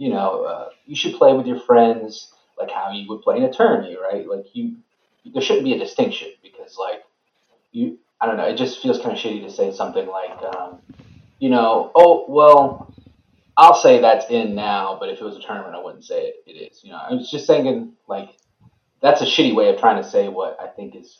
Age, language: 30-49, English